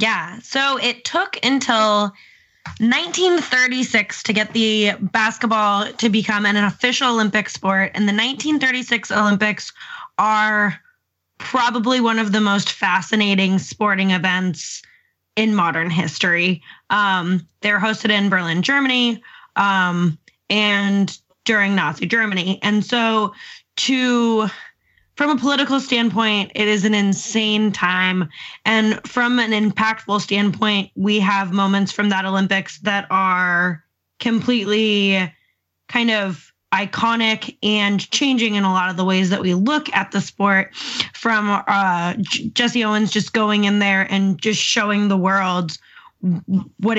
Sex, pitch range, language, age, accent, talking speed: female, 195-235 Hz, English, 20-39, American, 130 wpm